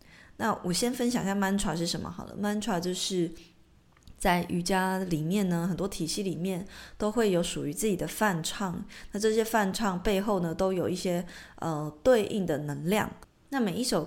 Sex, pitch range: female, 175-230 Hz